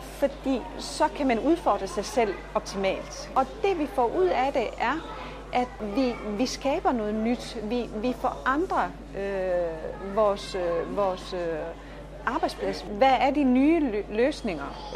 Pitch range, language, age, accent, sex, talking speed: 205-265 Hz, Danish, 30-49, native, female, 130 wpm